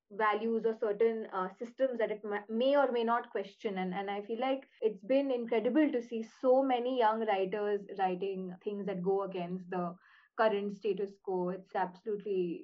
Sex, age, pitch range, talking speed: female, 20-39, 200-245 Hz, 175 wpm